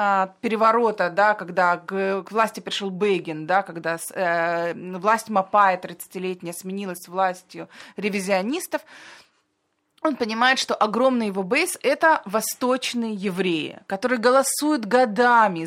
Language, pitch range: Russian, 195-245 Hz